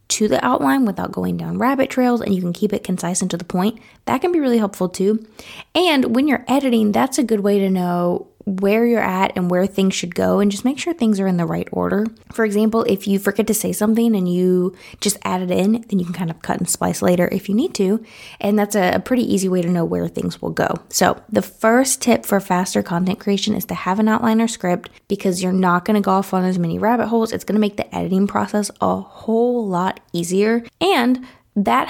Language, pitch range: English, 180-225 Hz